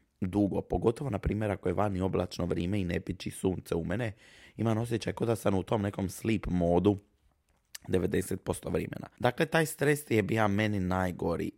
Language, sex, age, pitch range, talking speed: Croatian, male, 20-39, 95-115 Hz, 175 wpm